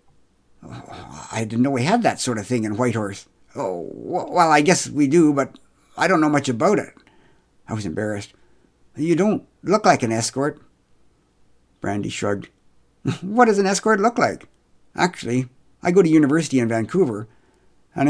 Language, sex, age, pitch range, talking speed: English, male, 60-79, 120-175 Hz, 165 wpm